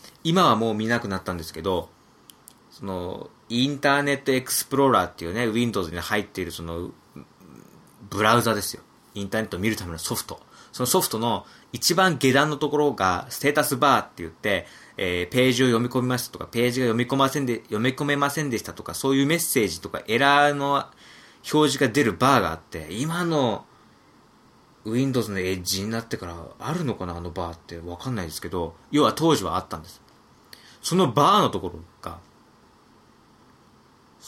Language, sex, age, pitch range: Japanese, male, 20-39, 100-140 Hz